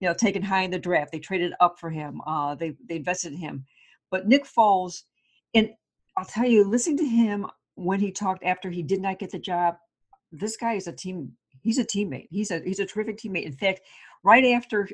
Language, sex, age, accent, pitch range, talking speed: English, female, 60-79, American, 170-225 Hz, 225 wpm